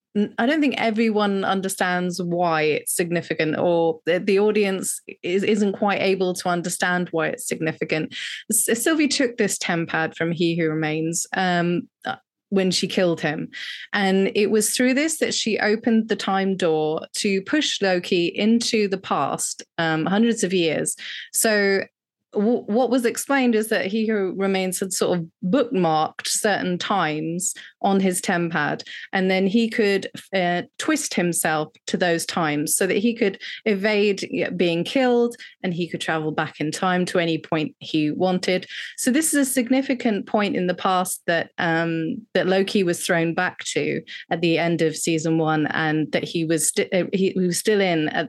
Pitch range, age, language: 170-220 Hz, 20-39, English